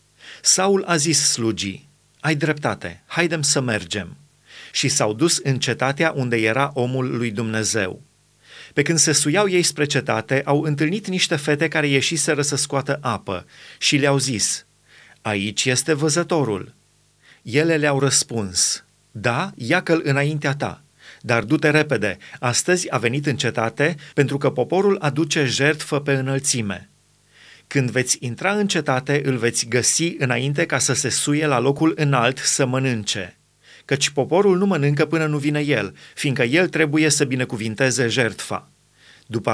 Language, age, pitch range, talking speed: Romanian, 30-49, 125-155 Hz, 145 wpm